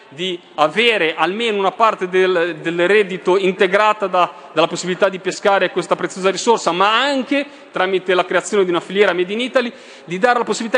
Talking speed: 180 wpm